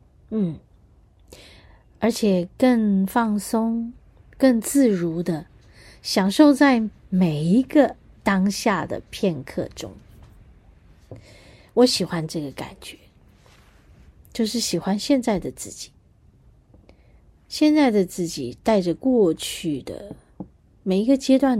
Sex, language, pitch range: female, Chinese, 165-230 Hz